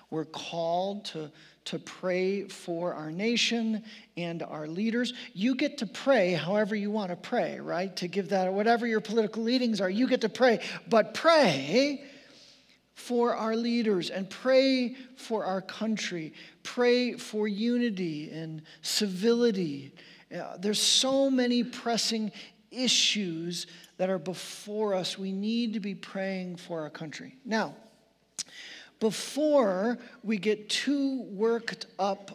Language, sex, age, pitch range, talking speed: English, male, 40-59, 190-245 Hz, 135 wpm